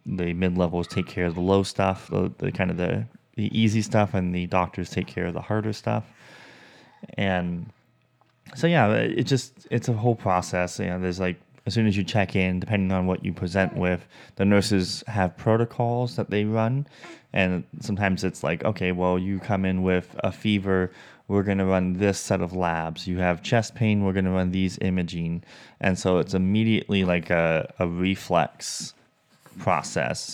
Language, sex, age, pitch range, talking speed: English, male, 20-39, 90-105 Hz, 195 wpm